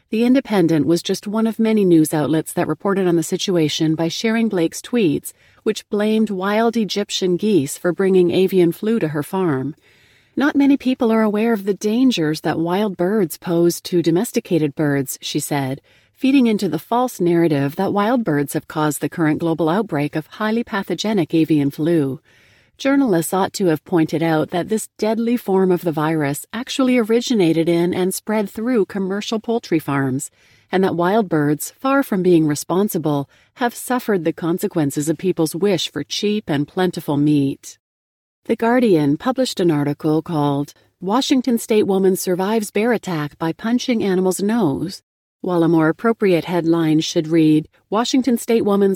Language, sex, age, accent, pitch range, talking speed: English, female, 40-59, American, 155-215 Hz, 165 wpm